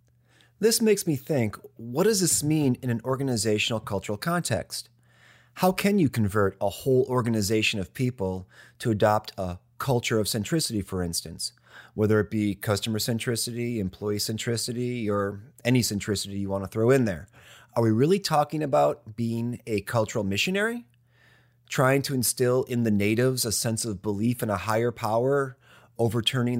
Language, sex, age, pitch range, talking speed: English, male, 30-49, 105-130 Hz, 160 wpm